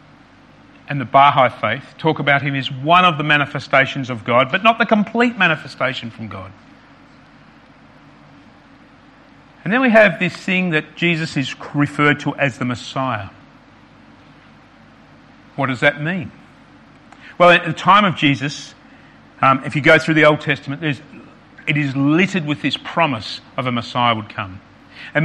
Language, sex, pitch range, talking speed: English, male, 135-175 Hz, 155 wpm